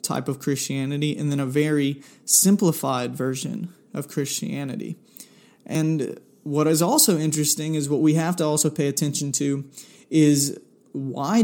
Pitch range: 140-175 Hz